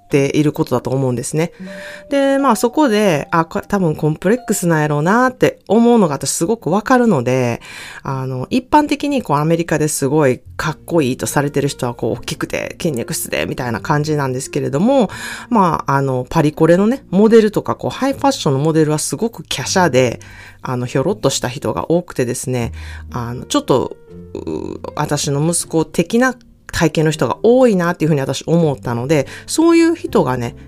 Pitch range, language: 135-215 Hz, Japanese